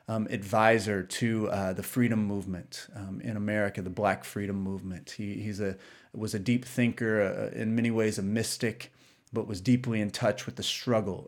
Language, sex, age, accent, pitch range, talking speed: English, male, 30-49, American, 105-130 Hz, 185 wpm